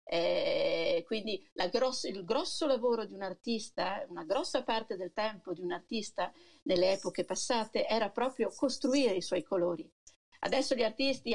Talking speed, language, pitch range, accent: 160 wpm, Italian, 200-275 Hz, native